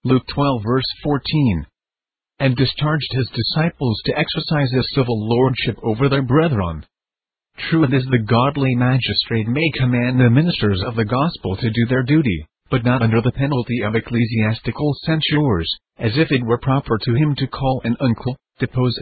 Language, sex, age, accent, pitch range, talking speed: English, male, 40-59, American, 115-140 Hz, 165 wpm